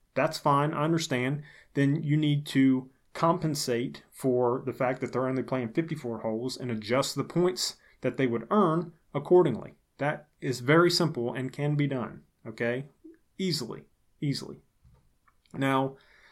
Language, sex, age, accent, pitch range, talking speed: English, male, 30-49, American, 115-140 Hz, 145 wpm